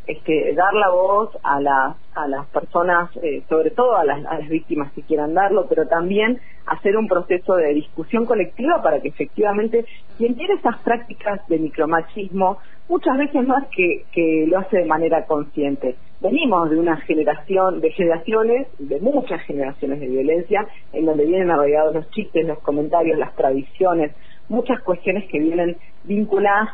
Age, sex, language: 40-59, female, Spanish